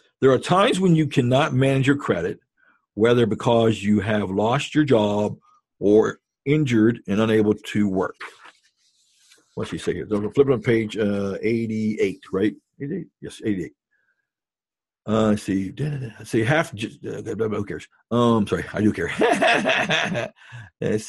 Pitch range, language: 105-135 Hz, English